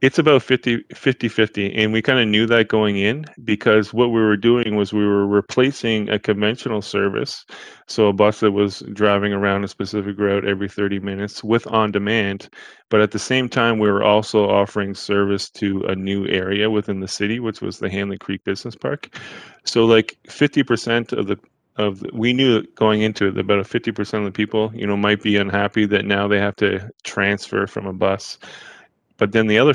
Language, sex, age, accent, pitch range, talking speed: English, male, 20-39, American, 100-110 Hz, 205 wpm